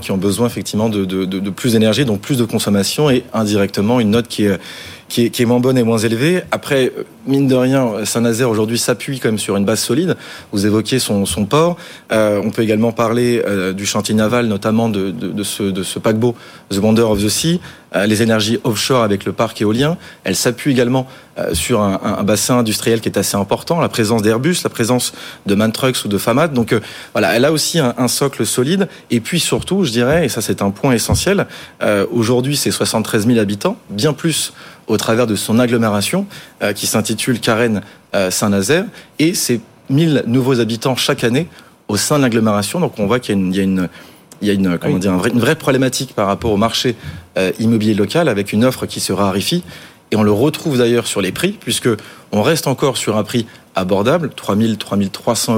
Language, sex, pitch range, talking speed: French, male, 105-130 Hz, 210 wpm